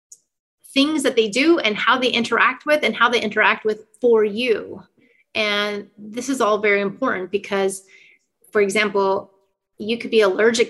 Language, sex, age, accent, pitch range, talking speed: English, female, 30-49, American, 205-235 Hz, 165 wpm